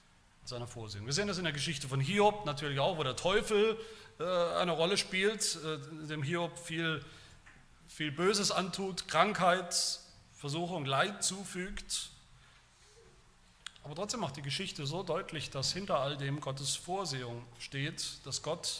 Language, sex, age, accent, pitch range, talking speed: German, male, 40-59, German, 130-175 Hz, 145 wpm